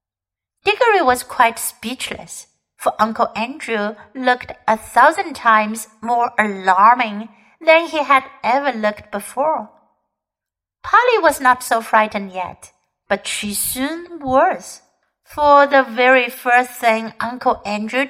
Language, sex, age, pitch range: Chinese, female, 60-79, 215-290 Hz